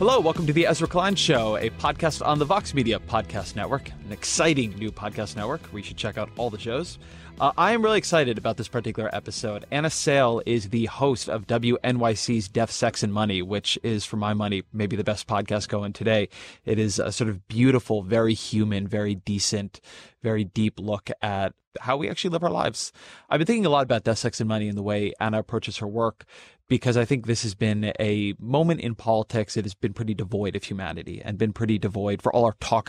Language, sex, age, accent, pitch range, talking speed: English, male, 20-39, American, 105-125 Hz, 220 wpm